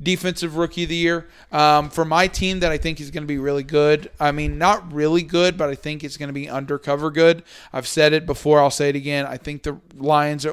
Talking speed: 250 wpm